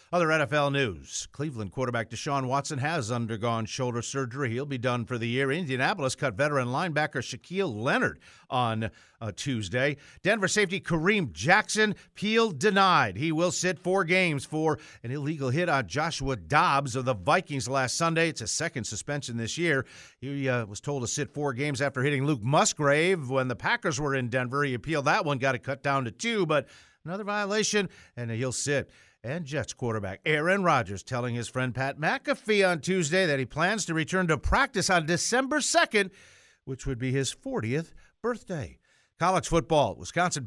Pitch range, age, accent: 130-175 Hz, 50-69, American